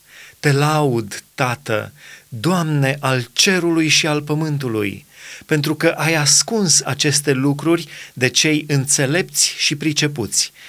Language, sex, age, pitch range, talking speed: Romanian, male, 30-49, 125-155 Hz, 110 wpm